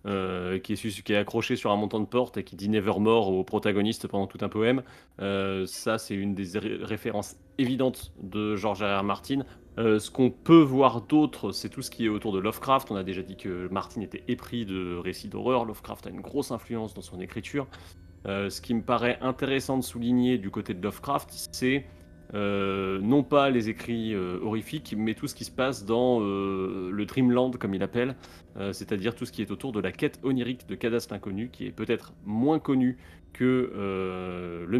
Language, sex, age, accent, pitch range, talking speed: French, male, 30-49, French, 95-125 Hz, 215 wpm